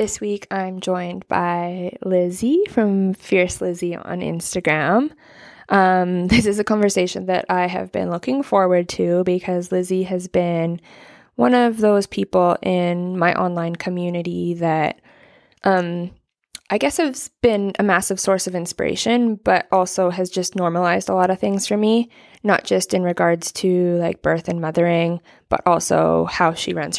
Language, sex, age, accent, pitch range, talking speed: English, female, 20-39, American, 170-195 Hz, 160 wpm